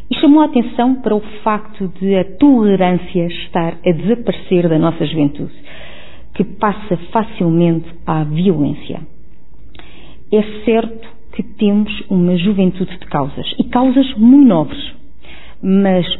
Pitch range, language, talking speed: 170-210 Hz, Portuguese, 125 wpm